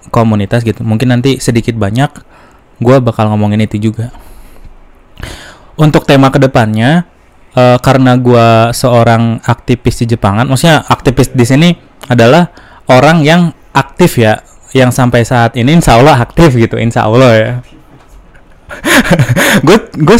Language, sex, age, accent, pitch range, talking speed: Indonesian, male, 20-39, native, 115-150 Hz, 125 wpm